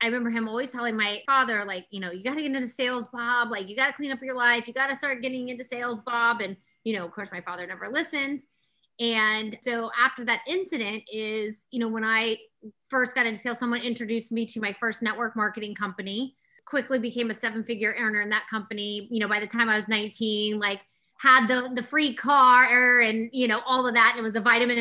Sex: female